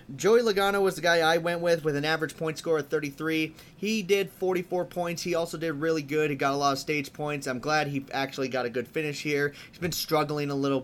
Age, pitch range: 30-49, 125-160 Hz